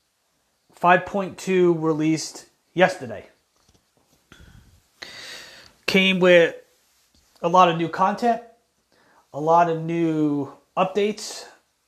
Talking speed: 70 wpm